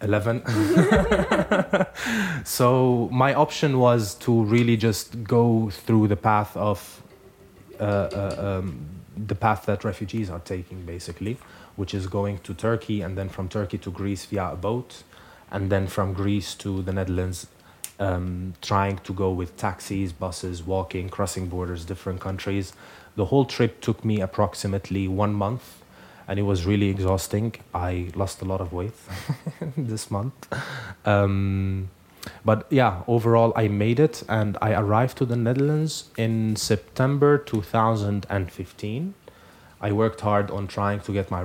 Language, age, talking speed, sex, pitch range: English, 20-39, 145 wpm, male, 95-110 Hz